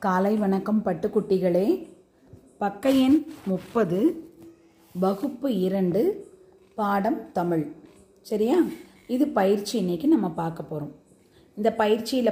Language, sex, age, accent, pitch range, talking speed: Tamil, female, 30-49, native, 180-250 Hz, 90 wpm